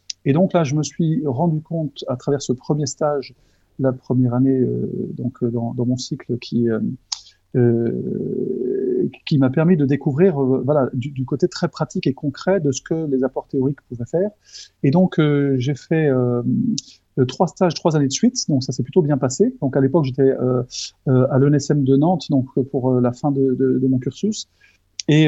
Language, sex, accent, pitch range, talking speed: French, male, French, 130-170 Hz, 195 wpm